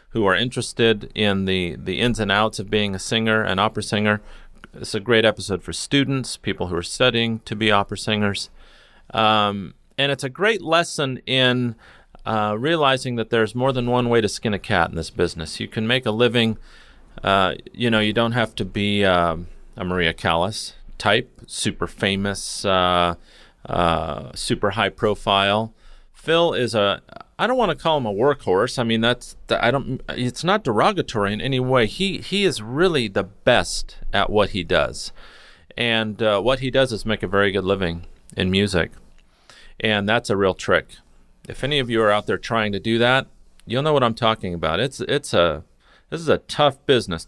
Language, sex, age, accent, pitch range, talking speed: English, male, 30-49, American, 95-125 Hz, 190 wpm